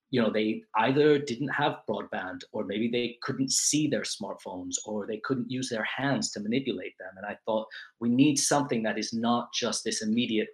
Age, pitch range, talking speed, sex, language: 20-39, 105-130 Hz, 200 wpm, male, English